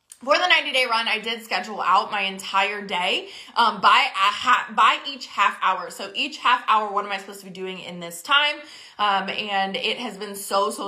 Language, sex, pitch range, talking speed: English, female, 195-270 Hz, 220 wpm